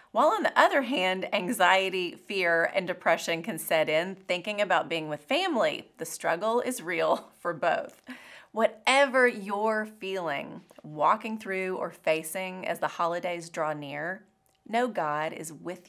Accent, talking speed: American, 145 wpm